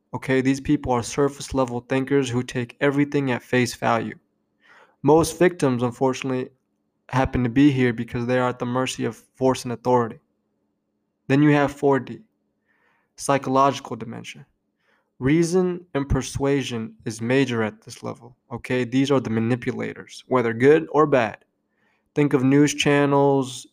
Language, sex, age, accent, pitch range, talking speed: English, male, 20-39, American, 120-145 Hz, 140 wpm